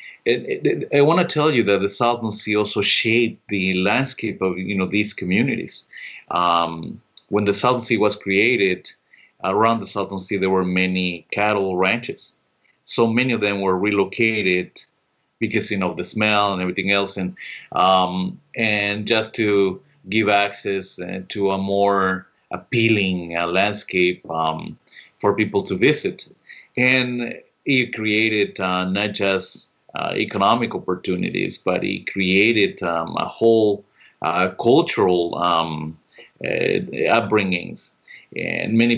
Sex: male